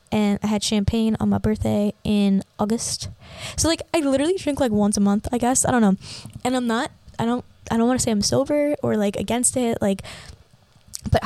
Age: 10-29